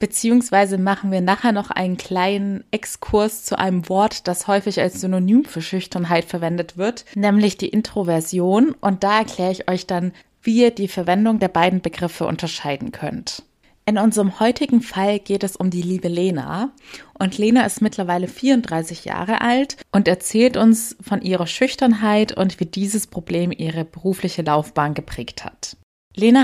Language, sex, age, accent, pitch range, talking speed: German, female, 20-39, German, 180-220 Hz, 160 wpm